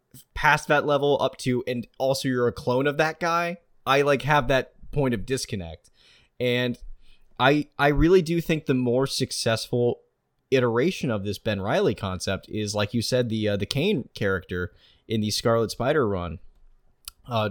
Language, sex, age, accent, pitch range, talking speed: English, male, 20-39, American, 105-140 Hz, 170 wpm